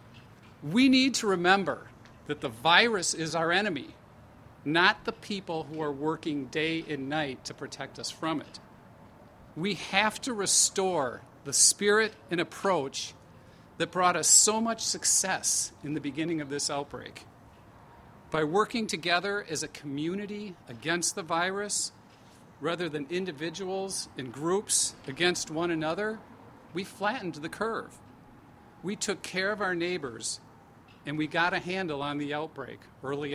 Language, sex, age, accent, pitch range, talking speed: English, male, 50-69, American, 130-180 Hz, 145 wpm